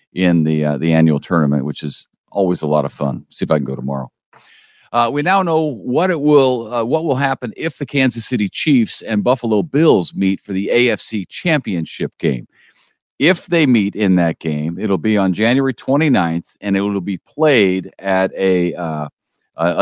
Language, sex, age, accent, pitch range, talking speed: English, male, 50-69, American, 85-120 Hz, 190 wpm